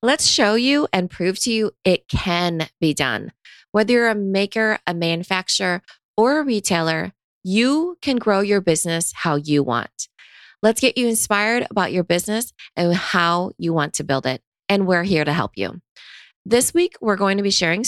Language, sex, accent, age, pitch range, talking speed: English, female, American, 20-39, 160-215 Hz, 185 wpm